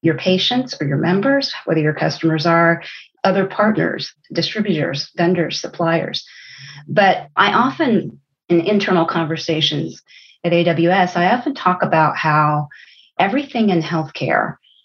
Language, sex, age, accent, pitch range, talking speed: English, female, 40-59, American, 165-210 Hz, 120 wpm